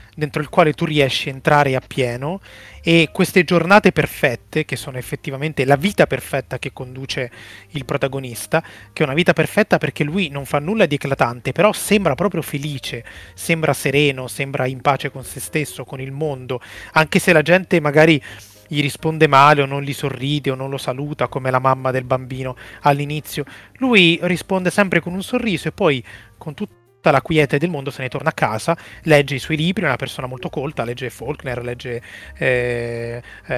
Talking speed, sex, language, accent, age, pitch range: 190 wpm, male, Italian, native, 30-49, 130-165 Hz